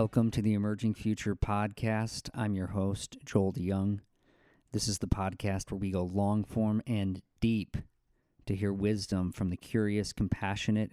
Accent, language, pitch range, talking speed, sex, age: American, English, 95-110 Hz, 160 wpm, male, 40-59